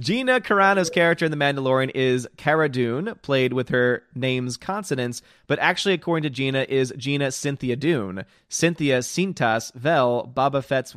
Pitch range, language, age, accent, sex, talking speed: 120-150 Hz, English, 30-49, American, male, 155 wpm